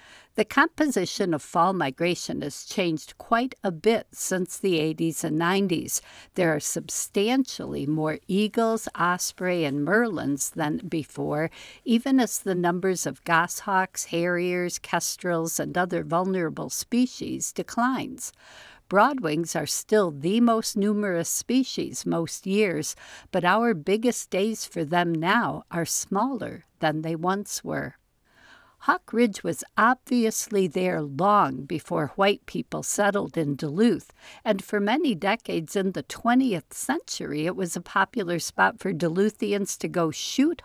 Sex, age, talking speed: female, 60-79, 135 wpm